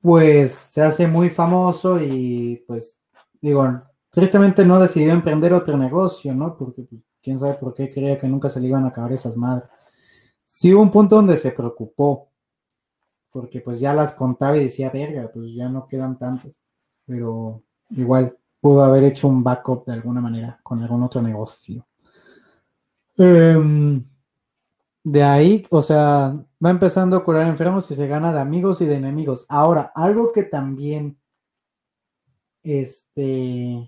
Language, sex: Spanish, male